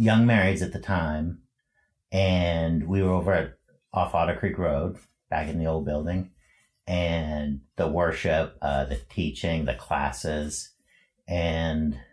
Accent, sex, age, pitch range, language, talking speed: American, male, 60-79, 75-95 Hz, English, 140 wpm